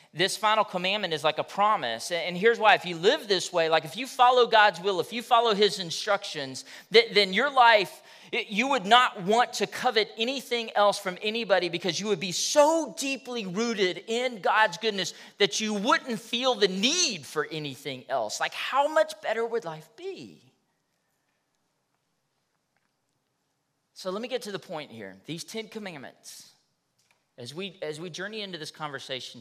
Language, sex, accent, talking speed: English, male, American, 170 wpm